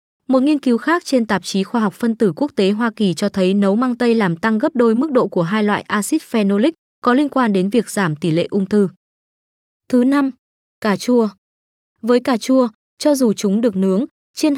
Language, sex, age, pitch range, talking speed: Vietnamese, female, 20-39, 200-250 Hz, 220 wpm